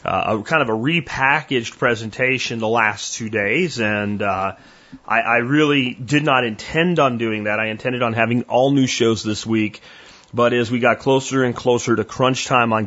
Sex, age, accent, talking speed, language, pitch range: male, 30-49, American, 190 wpm, English, 115-155 Hz